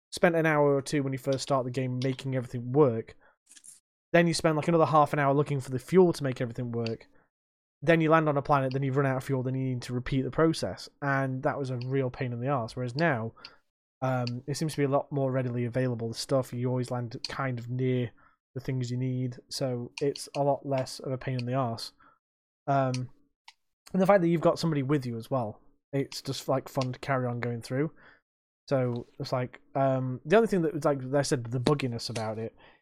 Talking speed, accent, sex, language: 235 wpm, British, male, English